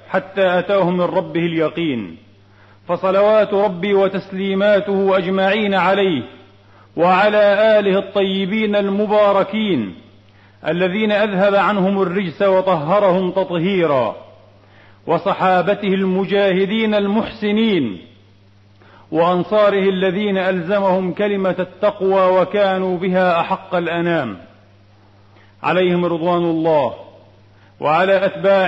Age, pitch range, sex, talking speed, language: 40-59, 150-190 Hz, male, 75 wpm, Arabic